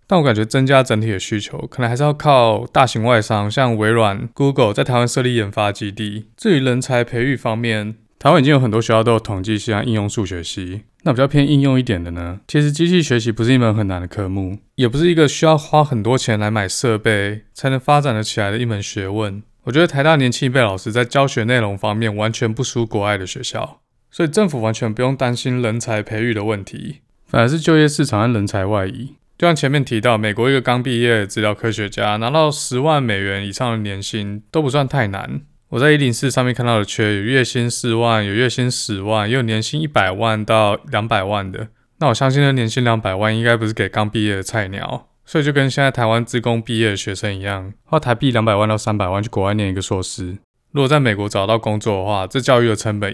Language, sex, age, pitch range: Chinese, male, 20-39, 105-130 Hz